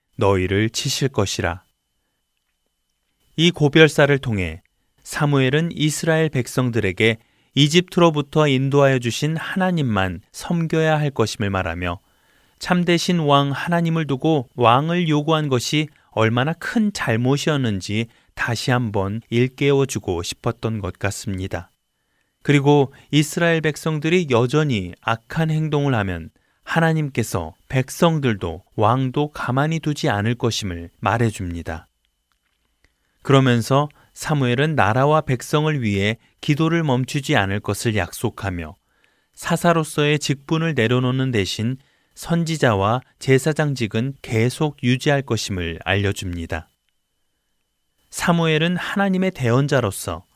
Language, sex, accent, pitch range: Korean, male, native, 105-155 Hz